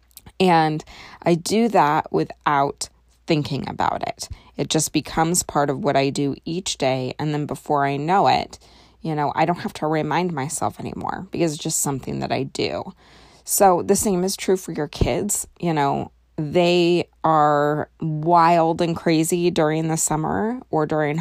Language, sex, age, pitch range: English, female, 20-39, 145-170 Hz